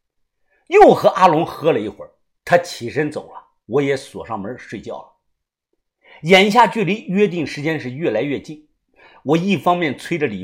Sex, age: male, 50-69